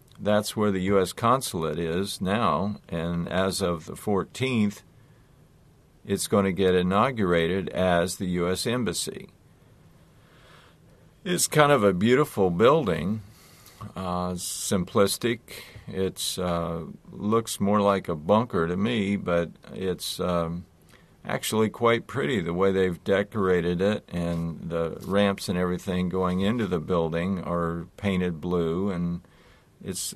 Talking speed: 125 wpm